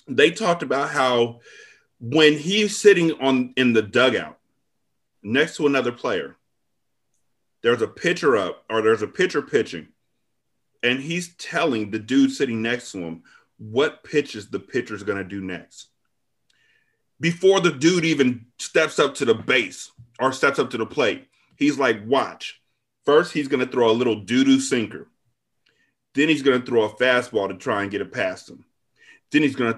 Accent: American